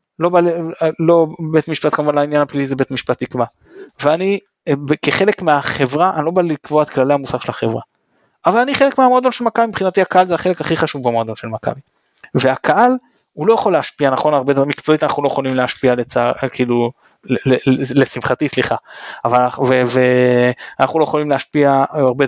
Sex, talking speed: male, 165 wpm